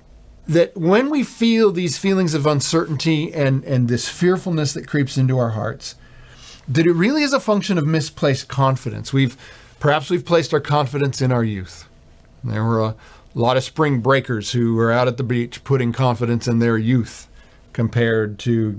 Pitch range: 120-175 Hz